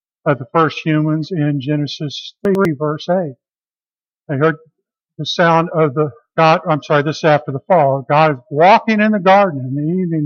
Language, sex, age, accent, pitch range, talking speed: English, male, 50-69, American, 150-195 Hz, 185 wpm